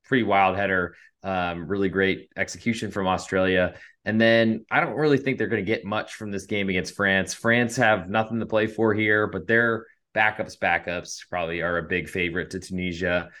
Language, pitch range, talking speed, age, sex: English, 90-115 Hz, 195 wpm, 20-39, male